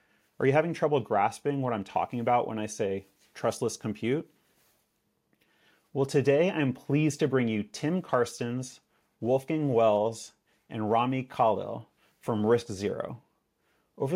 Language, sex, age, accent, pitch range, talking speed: English, male, 30-49, American, 110-145 Hz, 135 wpm